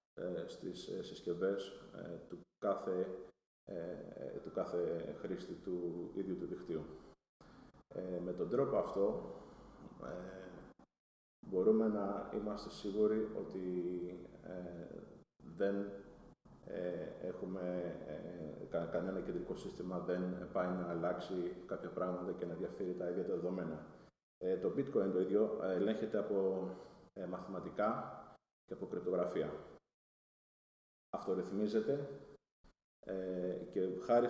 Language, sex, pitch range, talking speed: Greek, male, 85-95 Hz, 85 wpm